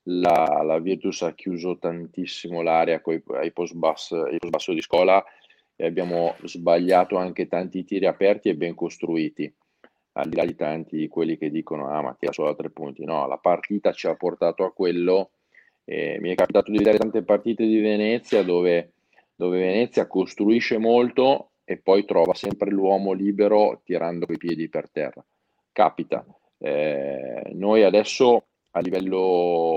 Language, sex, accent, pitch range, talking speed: Italian, male, native, 85-95 Hz, 155 wpm